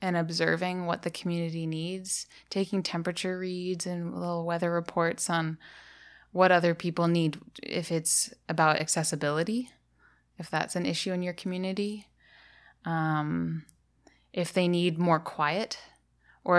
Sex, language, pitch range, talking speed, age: female, English, 155-180 Hz, 130 wpm, 20-39